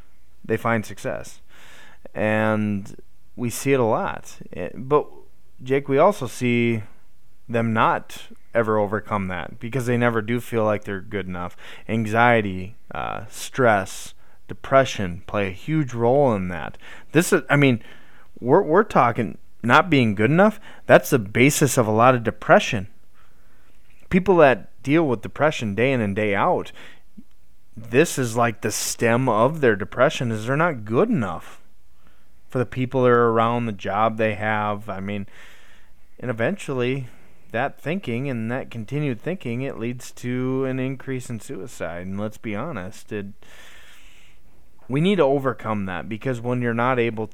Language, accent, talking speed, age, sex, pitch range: English, American, 155 wpm, 20-39, male, 105-130 Hz